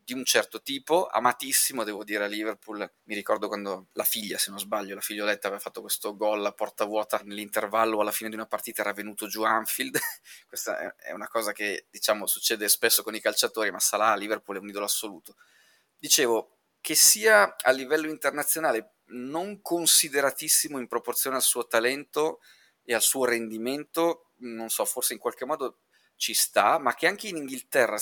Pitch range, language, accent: 110-145 Hz, Italian, native